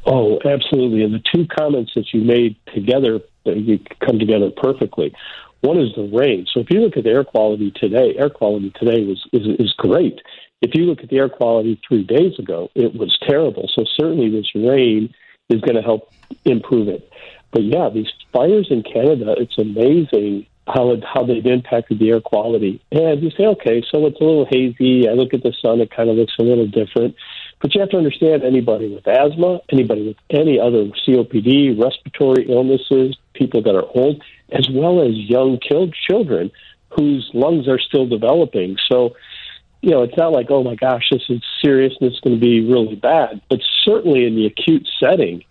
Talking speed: 195 wpm